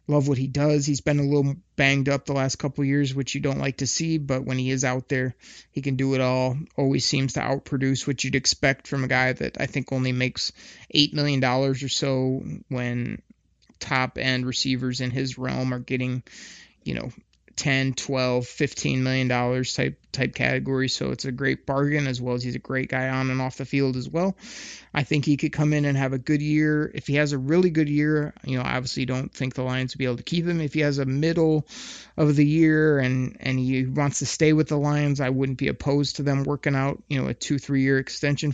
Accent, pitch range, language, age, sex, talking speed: American, 130-150 Hz, English, 20-39, male, 240 wpm